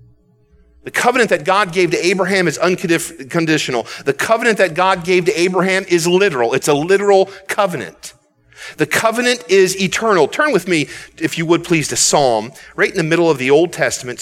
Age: 40-59